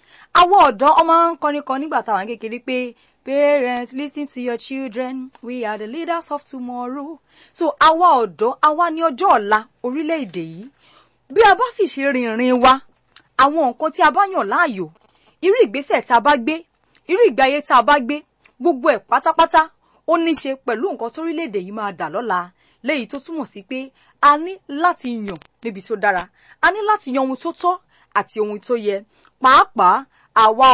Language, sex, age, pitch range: English, female, 30-49, 220-305 Hz